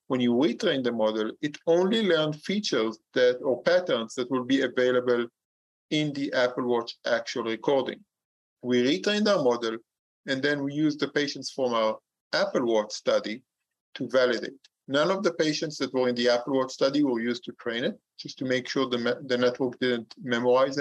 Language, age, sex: English, 50-69, male